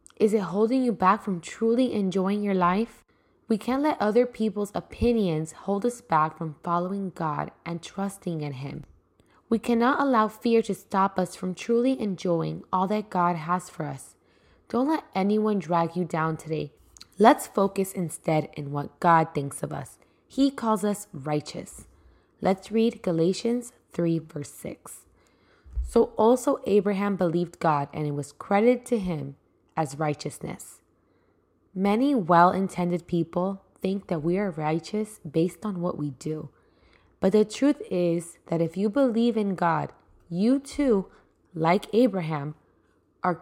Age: 10-29